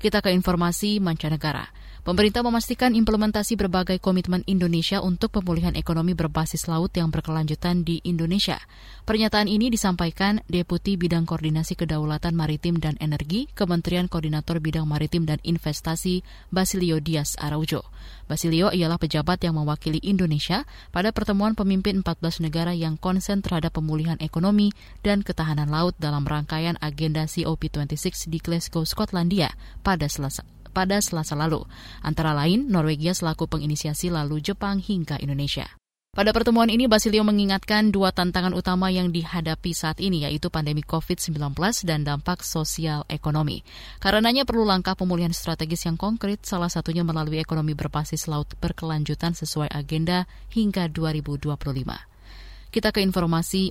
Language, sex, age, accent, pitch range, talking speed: Indonesian, female, 20-39, native, 155-190 Hz, 130 wpm